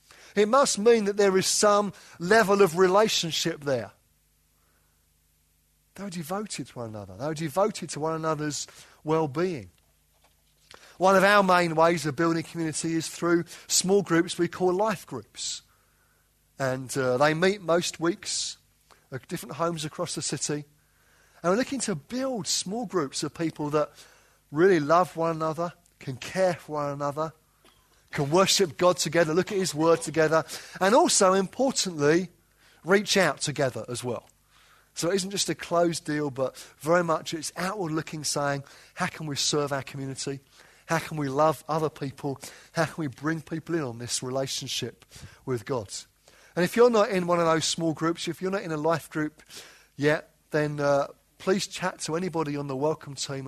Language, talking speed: English, 170 wpm